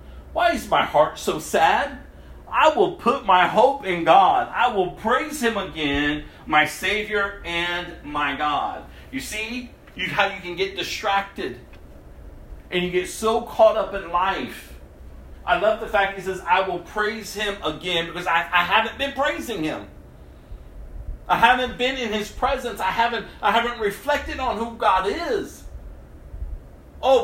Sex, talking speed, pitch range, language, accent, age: male, 155 wpm, 165-240 Hz, English, American, 40-59